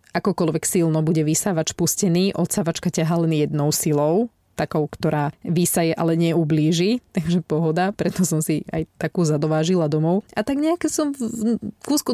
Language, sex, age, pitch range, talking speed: Slovak, female, 20-39, 160-205 Hz, 150 wpm